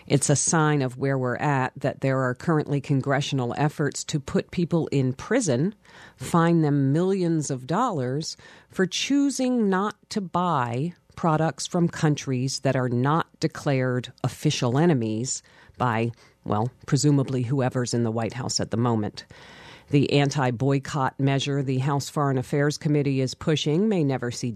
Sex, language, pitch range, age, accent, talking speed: female, English, 125-155 Hz, 50-69, American, 150 wpm